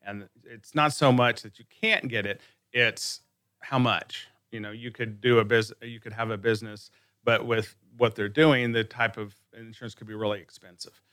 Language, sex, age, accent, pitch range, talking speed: English, male, 30-49, American, 100-115 Hz, 205 wpm